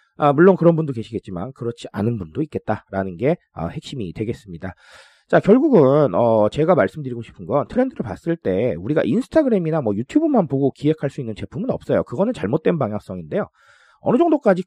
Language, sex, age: Korean, male, 40-59